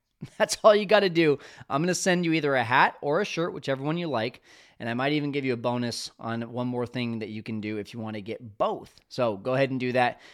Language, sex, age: English, male, 20-39